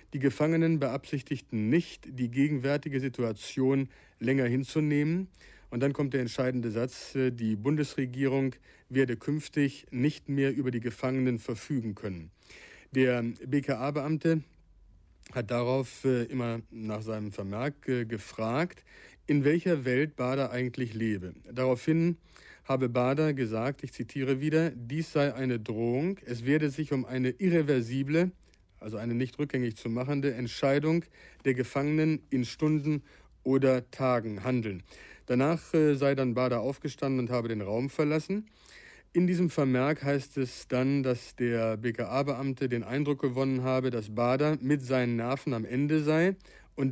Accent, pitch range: German, 120-145 Hz